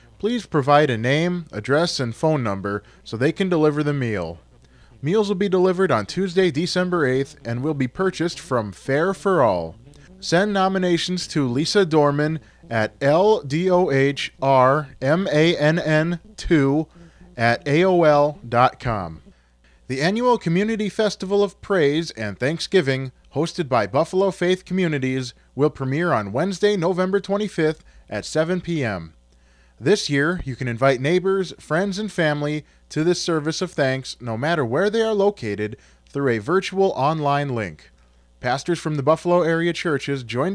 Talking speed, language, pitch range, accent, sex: 140 wpm, English, 125-180 Hz, American, male